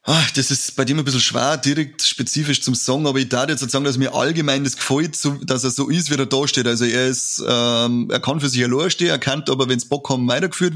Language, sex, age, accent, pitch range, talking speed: German, male, 30-49, German, 125-140 Hz, 255 wpm